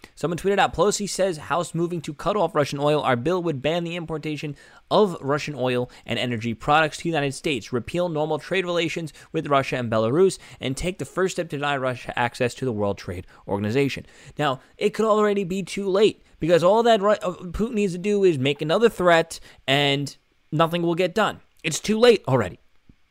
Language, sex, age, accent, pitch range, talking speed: English, male, 20-39, American, 120-165 Hz, 200 wpm